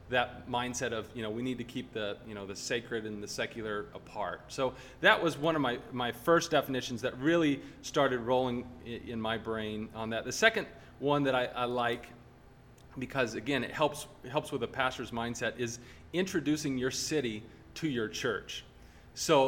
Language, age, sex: English, 40-59, male